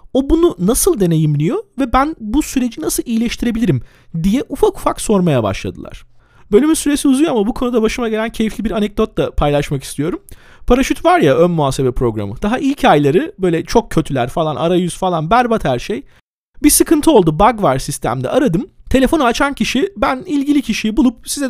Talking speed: 175 wpm